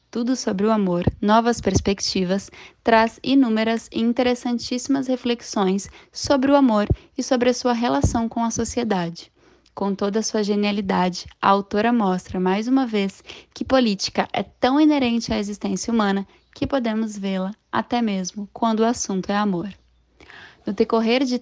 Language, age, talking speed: Portuguese, 10-29, 150 wpm